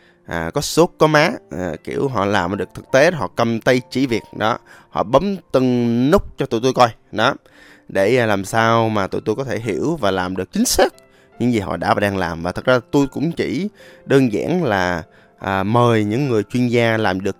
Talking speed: 225 wpm